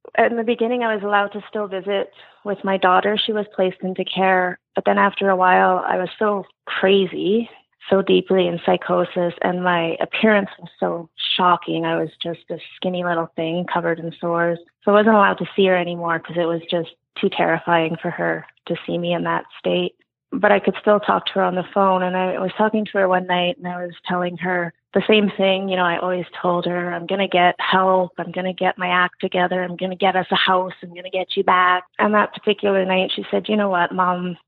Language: English